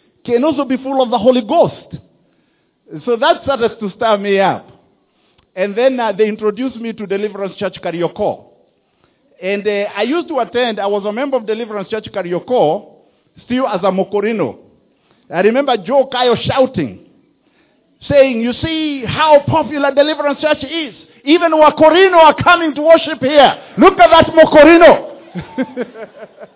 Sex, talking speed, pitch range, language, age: male, 150 wpm, 215-290 Hz, English, 50-69